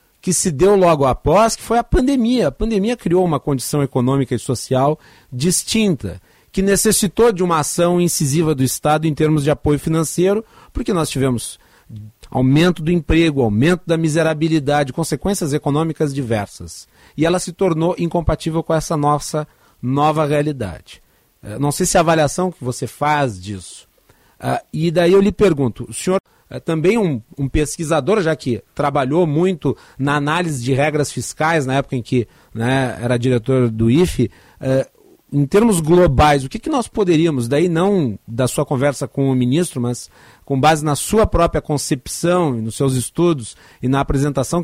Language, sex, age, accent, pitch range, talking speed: Portuguese, male, 40-59, Brazilian, 135-180 Hz, 165 wpm